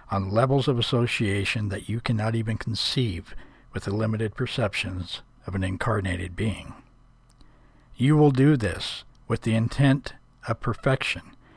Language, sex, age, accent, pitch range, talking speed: English, male, 60-79, American, 100-130 Hz, 135 wpm